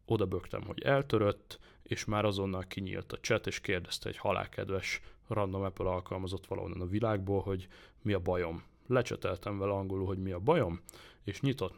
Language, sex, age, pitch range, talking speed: Hungarian, male, 30-49, 95-115 Hz, 170 wpm